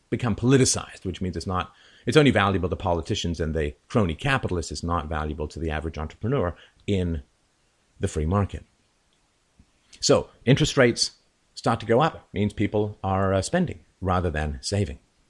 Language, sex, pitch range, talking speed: English, male, 85-120 Hz, 155 wpm